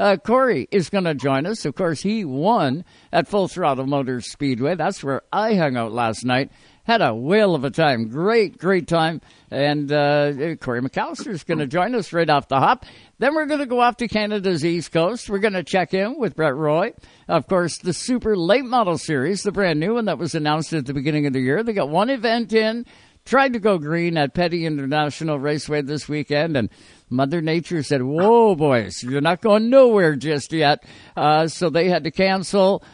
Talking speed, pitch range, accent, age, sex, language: 210 wpm, 145-205 Hz, American, 60-79, male, English